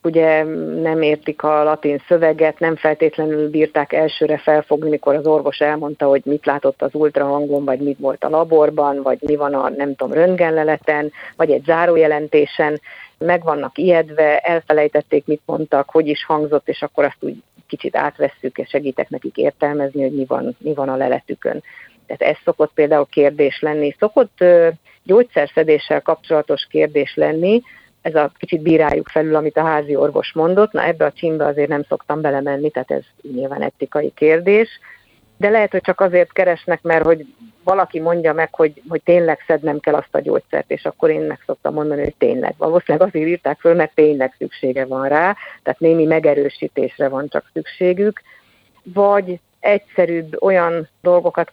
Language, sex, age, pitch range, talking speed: Hungarian, female, 50-69, 145-170 Hz, 165 wpm